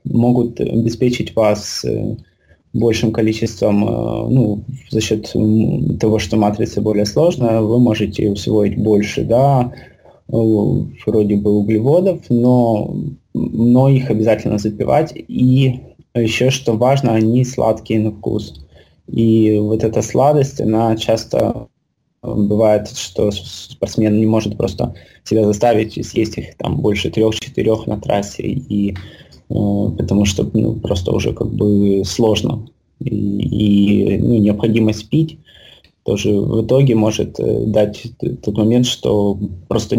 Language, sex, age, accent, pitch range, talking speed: Ukrainian, male, 20-39, native, 105-120 Hz, 115 wpm